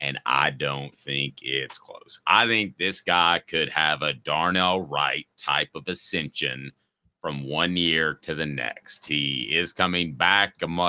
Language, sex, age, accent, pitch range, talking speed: English, male, 30-49, American, 70-105 Hz, 155 wpm